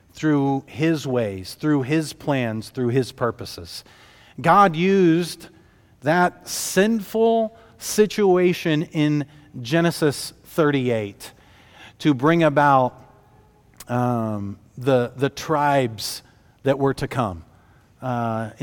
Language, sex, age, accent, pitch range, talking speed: English, male, 40-59, American, 125-160 Hz, 95 wpm